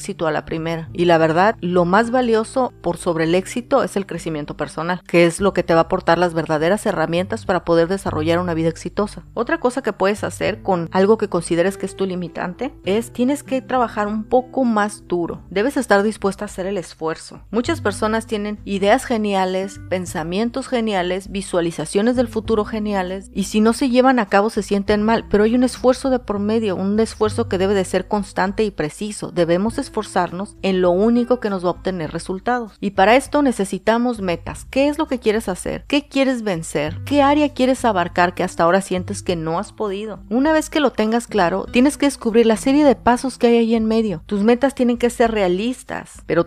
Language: Spanish